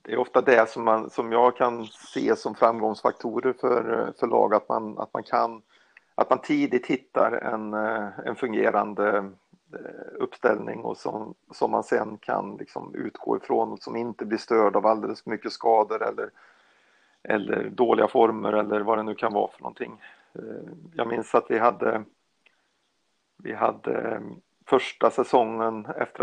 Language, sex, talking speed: Swedish, male, 155 wpm